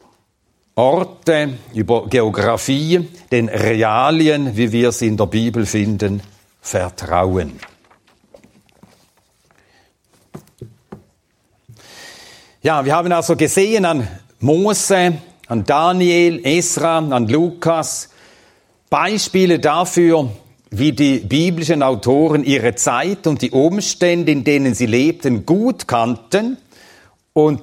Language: German